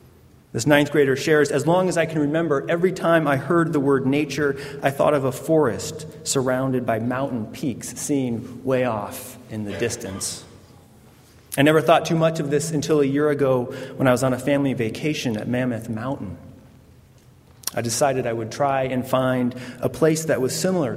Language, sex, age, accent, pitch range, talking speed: English, male, 30-49, American, 115-150 Hz, 185 wpm